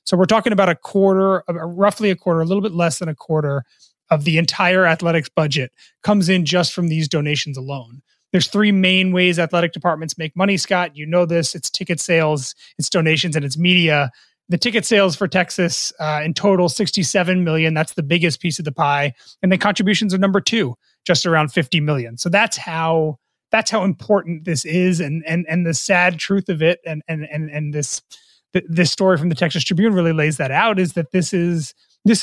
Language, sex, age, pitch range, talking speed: English, male, 30-49, 160-195 Hz, 205 wpm